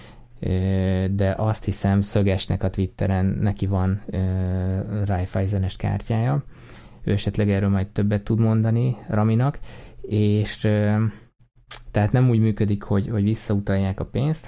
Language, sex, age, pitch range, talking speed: Hungarian, male, 20-39, 95-110 Hz, 125 wpm